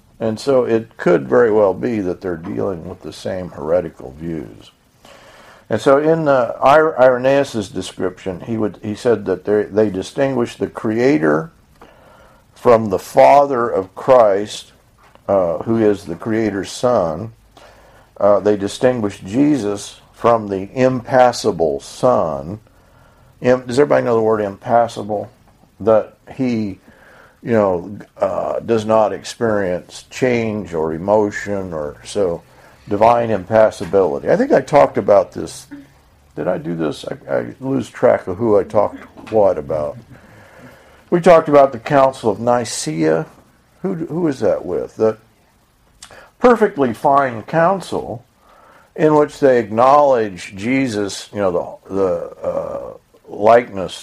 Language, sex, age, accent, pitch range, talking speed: English, male, 50-69, American, 100-135 Hz, 130 wpm